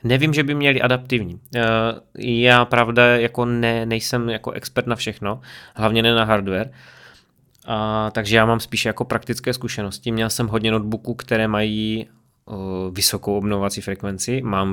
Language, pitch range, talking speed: Czech, 105-120 Hz, 130 wpm